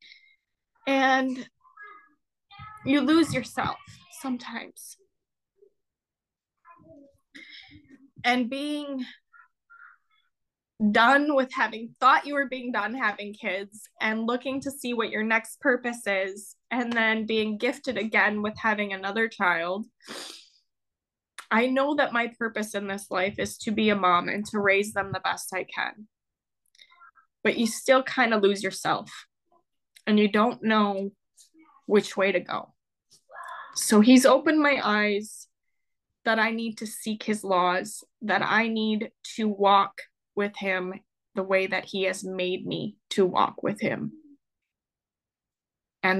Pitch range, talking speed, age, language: 200-275 Hz, 130 wpm, 10-29, English